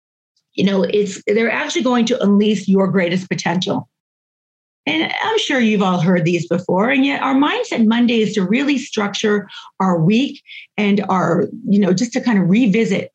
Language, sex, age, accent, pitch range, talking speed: English, female, 40-59, American, 185-240 Hz, 180 wpm